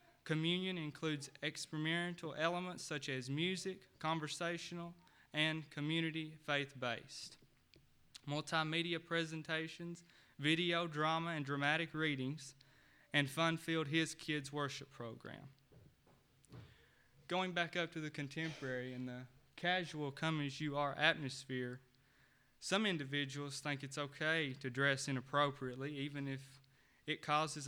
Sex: male